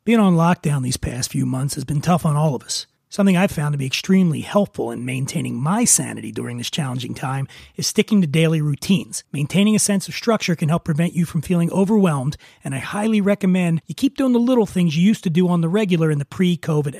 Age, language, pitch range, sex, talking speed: 30-49, English, 155-195 Hz, male, 235 wpm